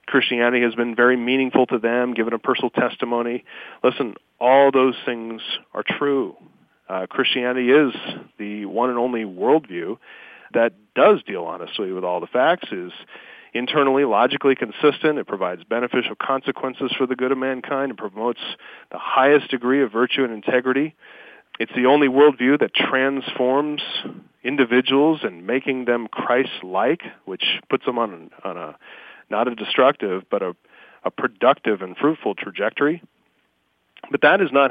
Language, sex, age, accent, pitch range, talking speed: English, male, 40-59, American, 115-135 Hz, 150 wpm